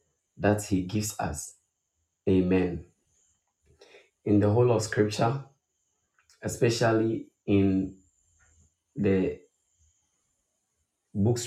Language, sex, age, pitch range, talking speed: English, male, 30-49, 95-115 Hz, 75 wpm